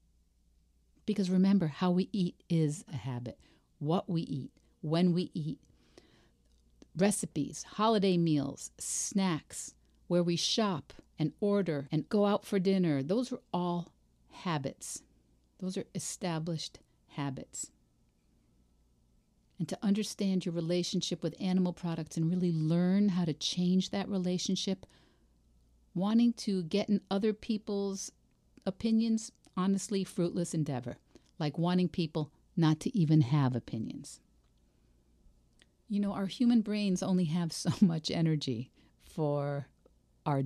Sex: female